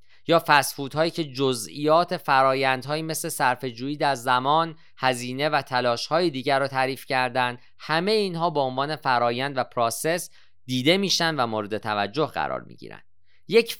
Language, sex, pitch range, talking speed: Persian, male, 125-170 Hz, 145 wpm